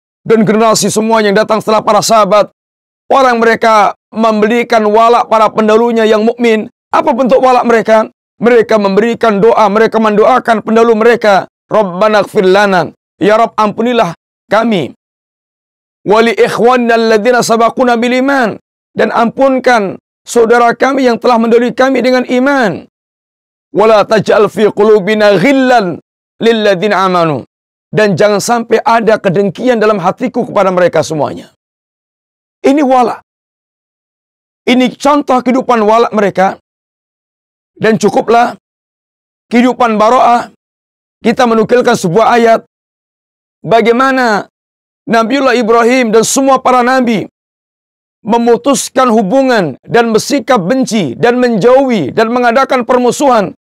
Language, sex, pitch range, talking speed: Indonesian, male, 215-245 Hz, 105 wpm